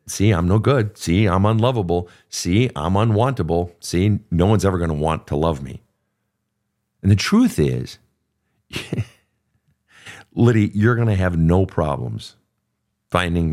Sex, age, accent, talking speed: male, 50-69, American, 140 wpm